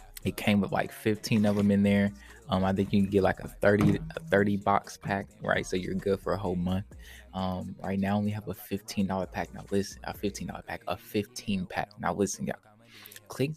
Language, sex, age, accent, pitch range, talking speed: English, male, 20-39, American, 90-105 Hz, 225 wpm